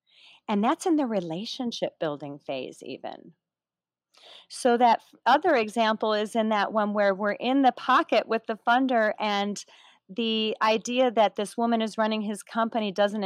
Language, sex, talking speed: English, female, 160 wpm